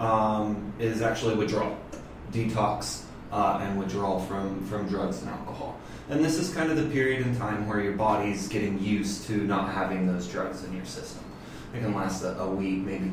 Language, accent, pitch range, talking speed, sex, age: English, American, 95-115 Hz, 190 wpm, male, 20-39